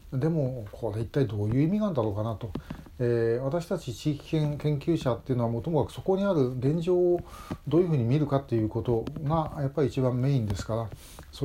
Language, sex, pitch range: Japanese, male, 115-150 Hz